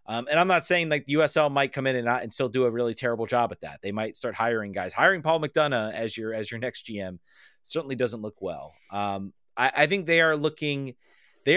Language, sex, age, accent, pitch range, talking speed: English, male, 30-49, American, 110-140 Hz, 245 wpm